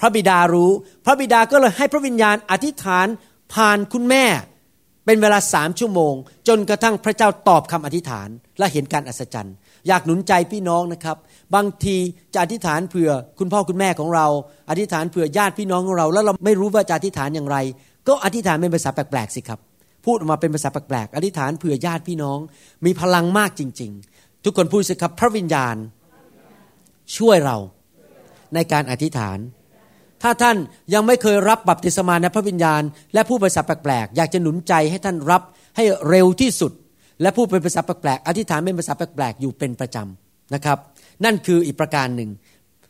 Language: Thai